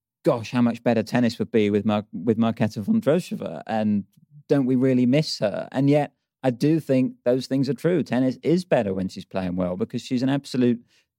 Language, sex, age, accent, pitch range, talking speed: English, male, 30-49, British, 100-120 Hz, 205 wpm